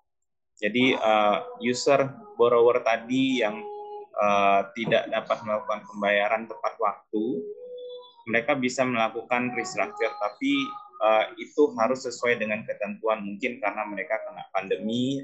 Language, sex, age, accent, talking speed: Indonesian, male, 20-39, native, 115 wpm